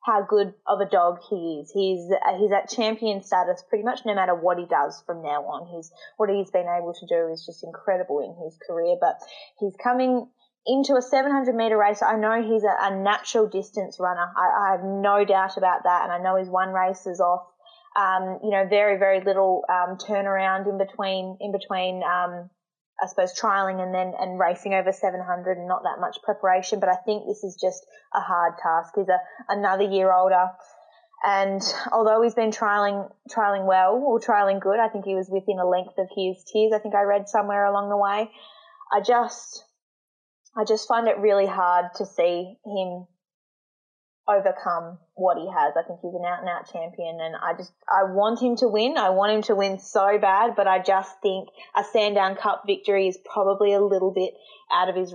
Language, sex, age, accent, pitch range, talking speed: English, female, 20-39, Australian, 185-210 Hz, 205 wpm